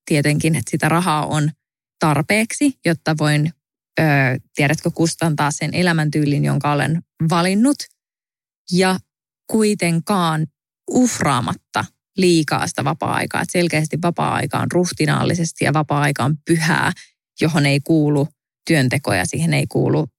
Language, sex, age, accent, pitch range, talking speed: English, female, 20-39, Finnish, 150-180 Hz, 110 wpm